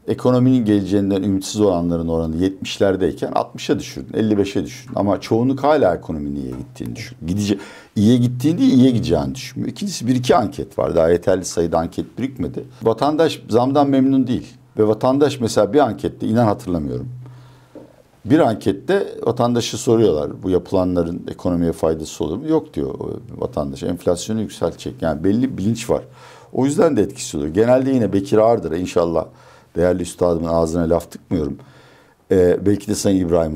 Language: Turkish